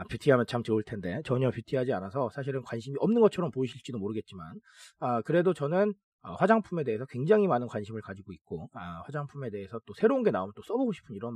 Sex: male